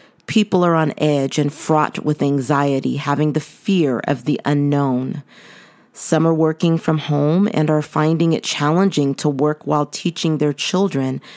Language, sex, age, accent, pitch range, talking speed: English, female, 40-59, American, 145-185 Hz, 160 wpm